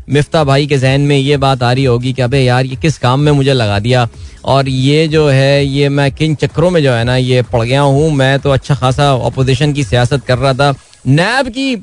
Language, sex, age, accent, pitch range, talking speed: Hindi, male, 20-39, native, 130-170 Hz, 245 wpm